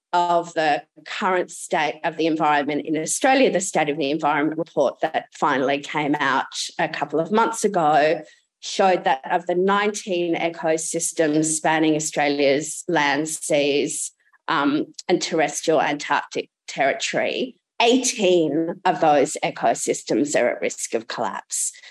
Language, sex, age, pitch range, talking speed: English, female, 30-49, 160-200 Hz, 130 wpm